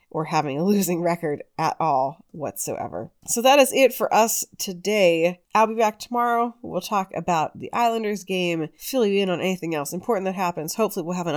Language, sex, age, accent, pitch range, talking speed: English, female, 30-49, American, 165-225 Hz, 200 wpm